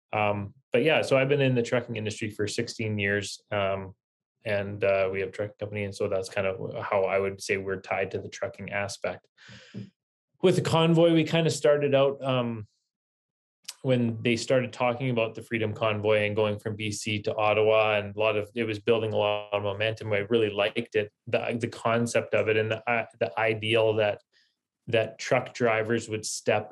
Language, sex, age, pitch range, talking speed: English, male, 20-39, 105-115 Hz, 200 wpm